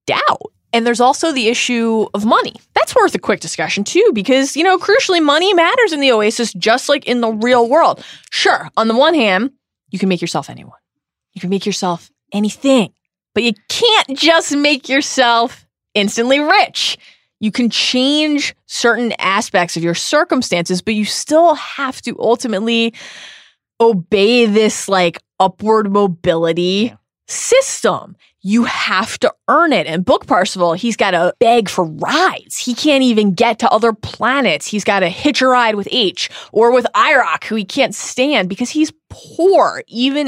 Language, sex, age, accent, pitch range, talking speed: English, female, 20-39, American, 185-260 Hz, 165 wpm